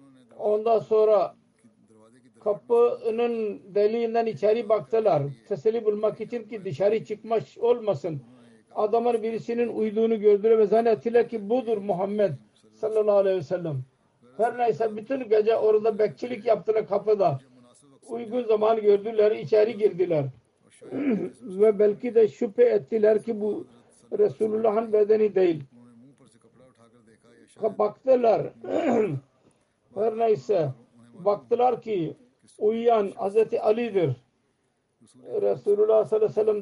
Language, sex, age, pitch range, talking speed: Turkish, male, 50-69, 180-225 Hz, 100 wpm